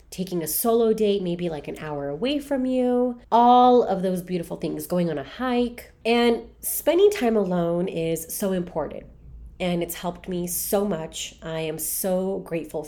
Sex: female